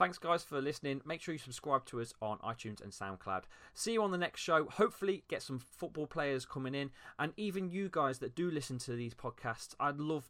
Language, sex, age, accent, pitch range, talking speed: English, male, 20-39, British, 115-160 Hz, 225 wpm